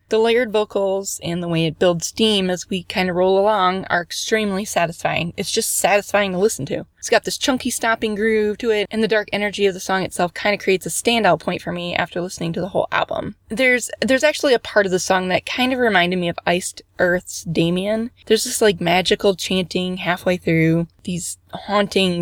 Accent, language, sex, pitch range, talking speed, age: American, English, female, 175-230 Hz, 215 wpm, 20-39